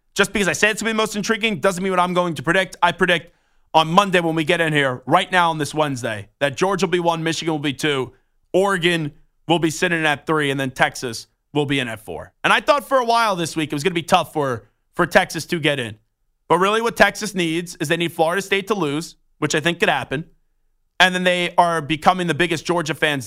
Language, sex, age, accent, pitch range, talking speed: English, male, 30-49, American, 150-200 Hz, 265 wpm